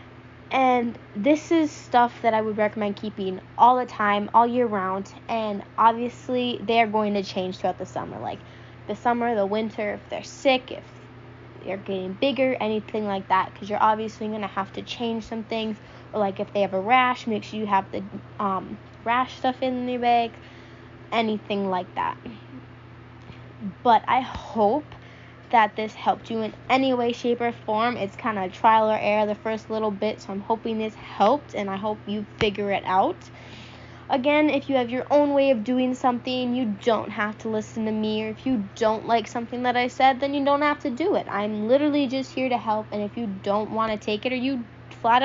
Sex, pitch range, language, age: female, 205-250 Hz, English, 10-29